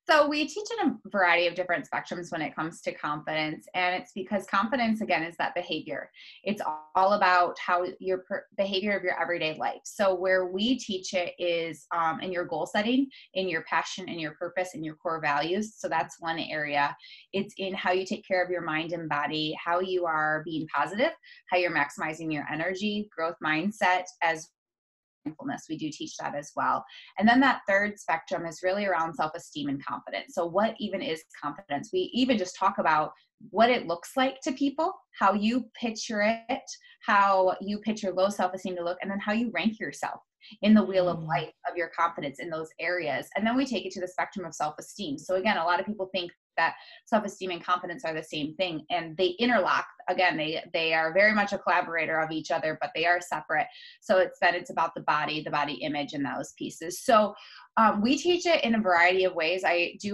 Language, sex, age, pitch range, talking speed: English, female, 20-39, 165-210 Hz, 210 wpm